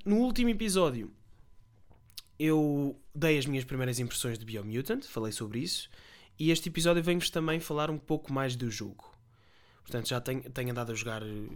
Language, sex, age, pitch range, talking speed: Portuguese, male, 20-39, 120-155 Hz, 165 wpm